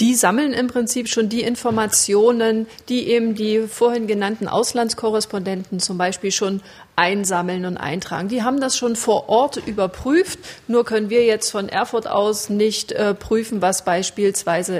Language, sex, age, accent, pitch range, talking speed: German, female, 40-59, German, 200-245 Hz, 155 wpm